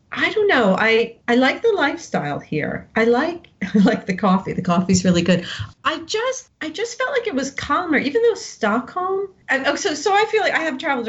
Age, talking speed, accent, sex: 40-59, 215 wpm, American, female